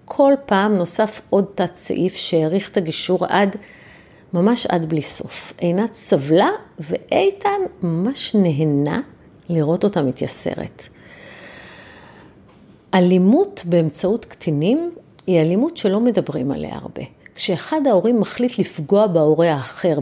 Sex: female